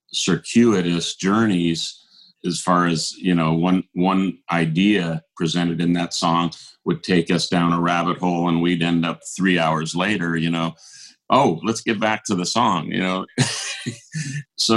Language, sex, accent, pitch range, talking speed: English, male, American, 85-105 Hz, 165 wpm